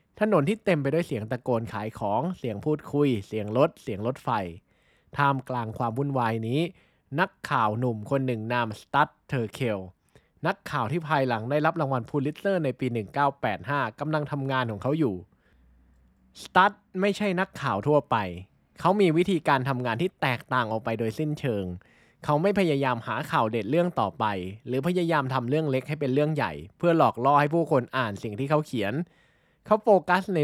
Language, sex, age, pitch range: Thai, male, 20-39, 115-165 Hz